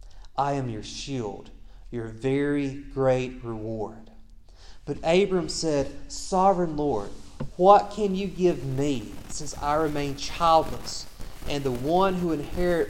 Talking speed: 125 wpm